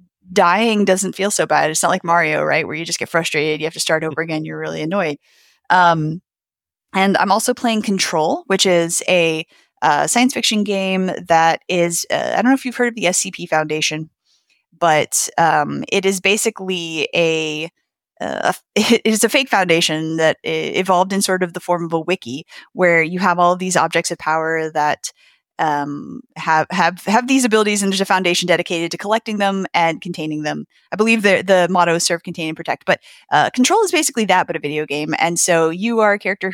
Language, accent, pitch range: English, American, 165-210 Hz